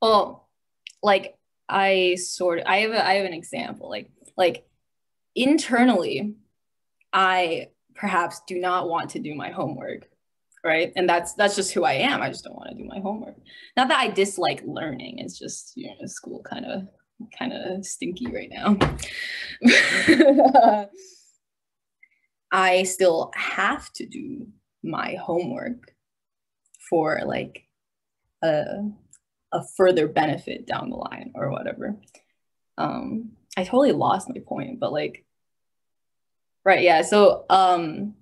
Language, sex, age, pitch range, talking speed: English, female, 10-29, 175-245 Hz, 135 wpm